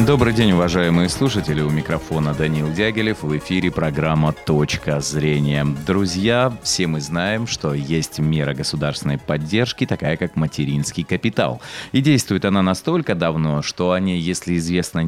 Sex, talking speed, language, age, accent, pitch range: male, 145 wpm, Russian, 30-49, native, 75-105 Hz